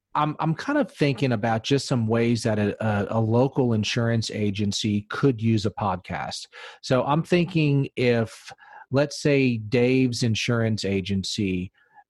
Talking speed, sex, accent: 140 wpm, male, American